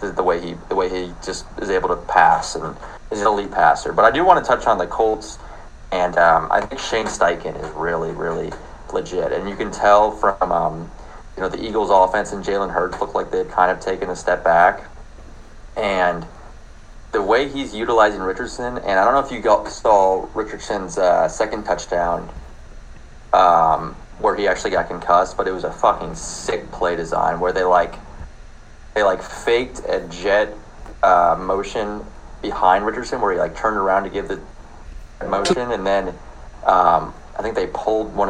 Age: 30-49